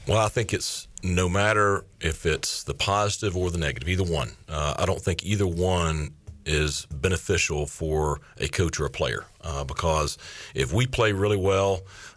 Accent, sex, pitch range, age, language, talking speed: American, male, 75-95 Hz, 40-59, English, 180 wpm